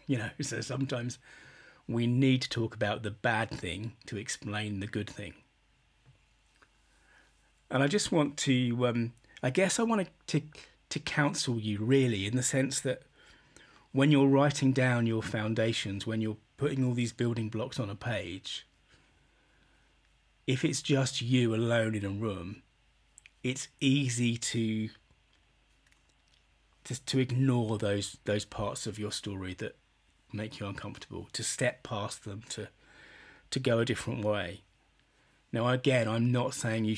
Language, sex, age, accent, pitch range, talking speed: English, male, 30-49, British, 105-130 Hz, 150 wpm